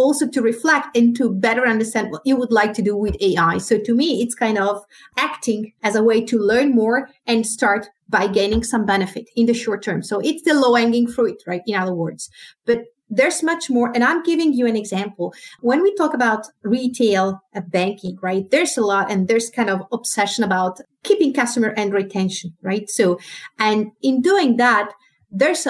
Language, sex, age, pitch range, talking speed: English, female, 30-49, 210-255 Hz, 200 wpm